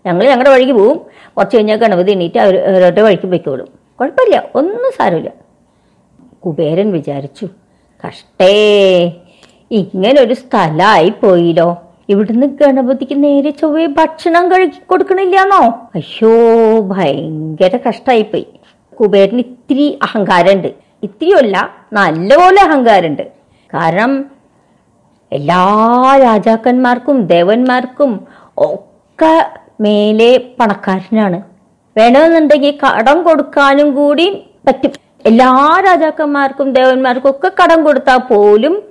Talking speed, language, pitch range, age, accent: 90 wpm, Malayalam, 200-295 Hz, 50-69, native